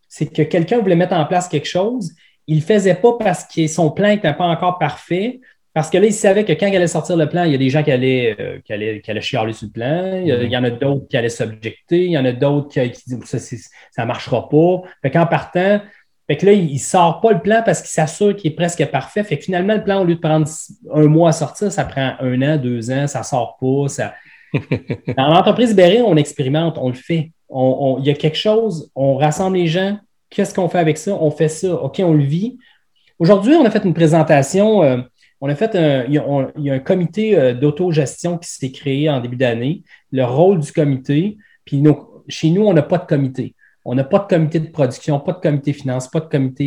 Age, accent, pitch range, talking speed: 30-49, Canadian, 135-180 Hz, 245 wpm